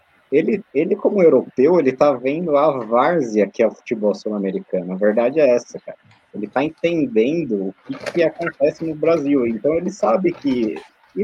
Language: Portuguese